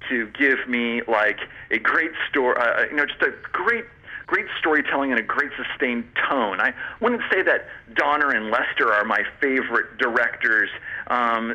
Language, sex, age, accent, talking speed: English, male, 40-59, American, 165 wpm